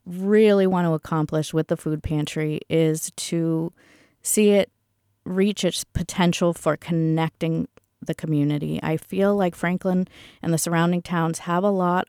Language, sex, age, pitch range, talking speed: English, female, 30-49, 160-190 Hz, 150 wpm